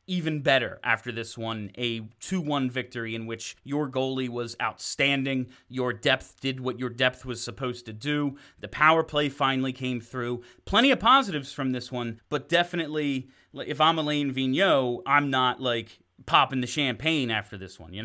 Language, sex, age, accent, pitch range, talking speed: English, male, 30-49, American, 120-150 Hz, 175 wpm